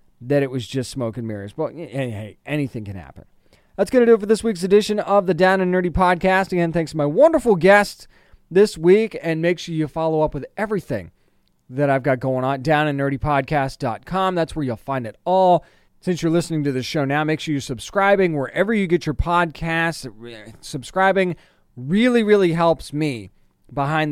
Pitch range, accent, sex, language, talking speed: 130-175 Hz, American, male, English, 190 wpm